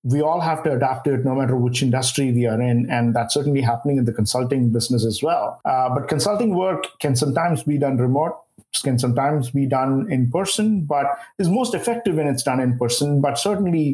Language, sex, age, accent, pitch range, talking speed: English, male, 50-69, Indian, 125-150 Hz, 215 wpm